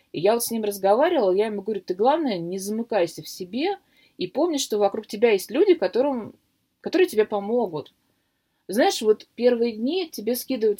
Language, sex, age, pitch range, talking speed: Russian, female, 20-39, 165-230 Hz, 180 wpm